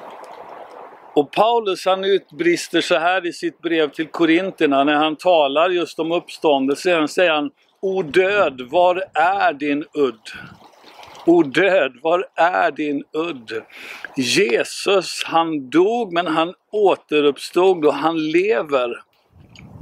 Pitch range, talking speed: 145-195 Hz, 135 wpm